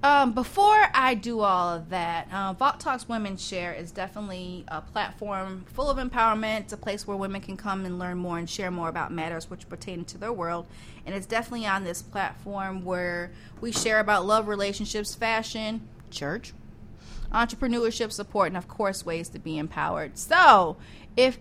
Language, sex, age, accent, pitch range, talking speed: English, female, 30-49, American, 190-275 Hz, 180 wpm